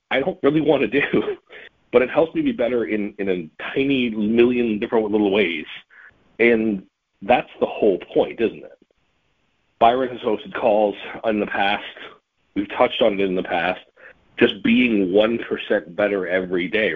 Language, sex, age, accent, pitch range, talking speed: English, male, 40-59, American, 100-120 Hz, 165 wpm